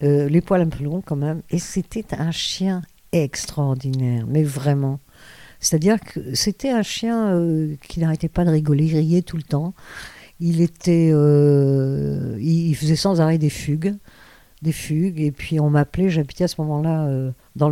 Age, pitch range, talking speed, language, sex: 50-69, 145-175 Hz, 175 wpm, French, female